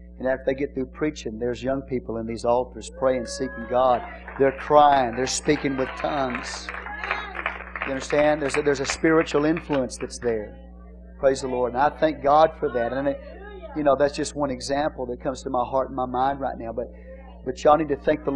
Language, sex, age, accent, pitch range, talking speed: English, male, 40-59, American, 110-165 Hz, 215 wpm